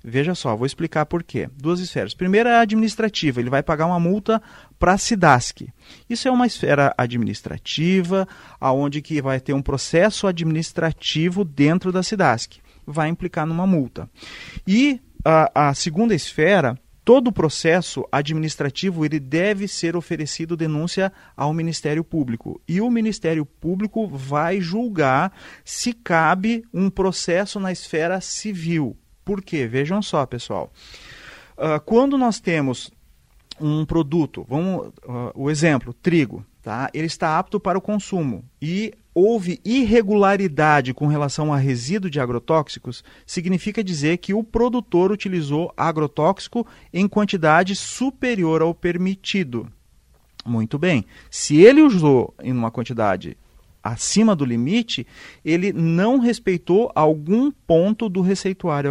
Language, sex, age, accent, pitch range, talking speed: Portuguese, male, 40-59, Brazilian, 145-195 Hz, 130 wpm